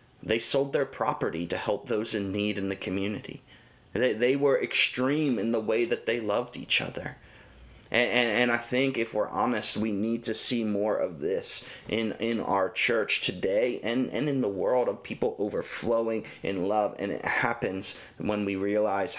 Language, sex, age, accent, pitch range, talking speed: English, male, 30-49, American, 100-125 Hz, 190 wpm